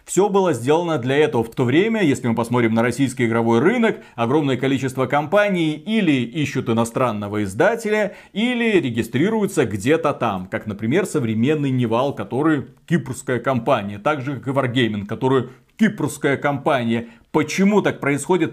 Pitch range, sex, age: 130-185 Hz, male, 40-59